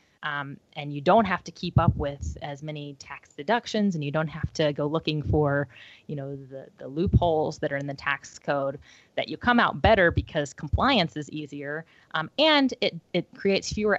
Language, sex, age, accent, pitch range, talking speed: English, female, 20-39, American, 145-190 Hz, 200 wpm